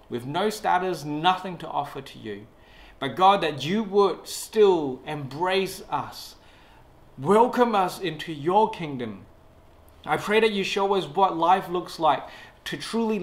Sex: male